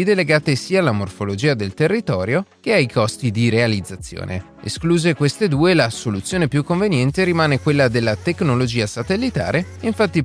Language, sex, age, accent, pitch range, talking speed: Italian, male, 30-49, native, 110-160 Hz, 140 wpm